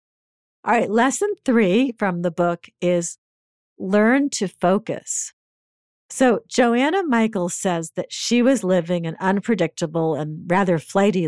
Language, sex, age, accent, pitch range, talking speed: English, female, 50-69, American, 180-255 Hz, 130 wpm